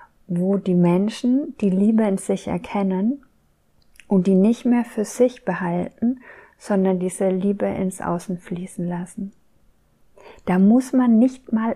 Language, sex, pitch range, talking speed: German, female, 180-205 Hz, 140 wpm